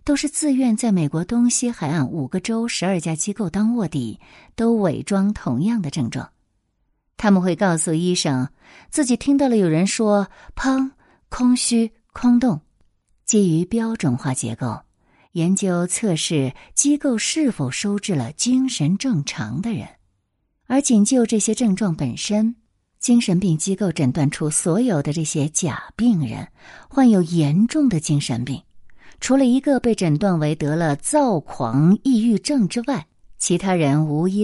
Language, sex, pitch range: Chinese, female, 150-230 Hz